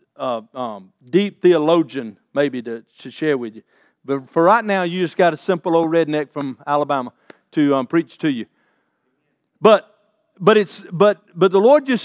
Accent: American